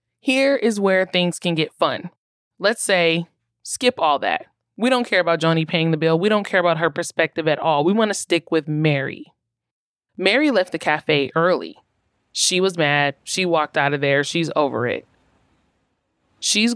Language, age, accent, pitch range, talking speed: English, 20-39, American, 155-210 Hz, 185 wpm